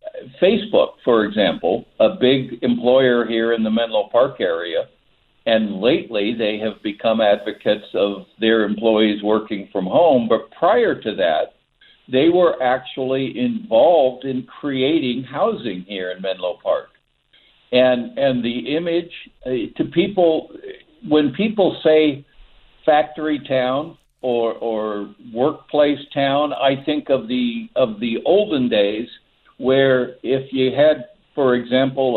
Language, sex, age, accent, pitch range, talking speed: English, male, 60-79, American, 125-160 Hz, 130 wpm